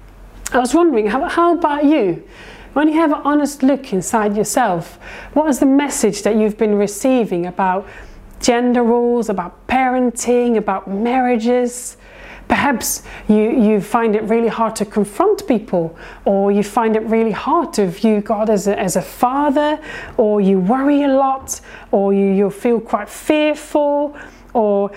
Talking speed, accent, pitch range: 160 wpm, British, 205-280 Hz